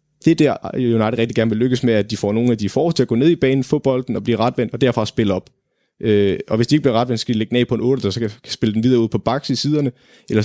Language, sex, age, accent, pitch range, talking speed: Danish, male, 30-49, native, 110-135 Hz, 310 wpm